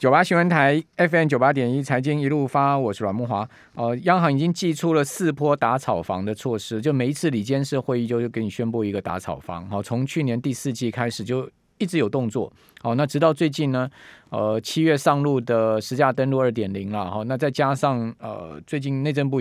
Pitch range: 110-145 Hz